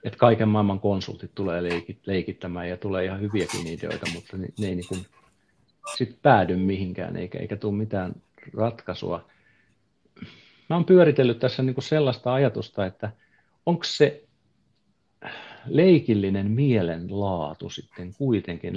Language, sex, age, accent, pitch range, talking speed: Finnish, male, 50-69, native, 95-120 Hz, 120 wpm